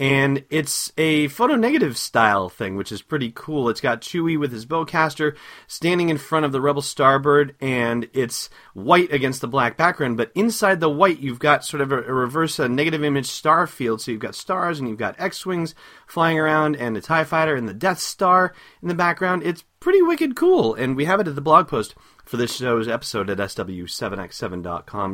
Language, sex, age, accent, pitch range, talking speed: English, male, 30-49, American, 105-155 Hz, 200 wpm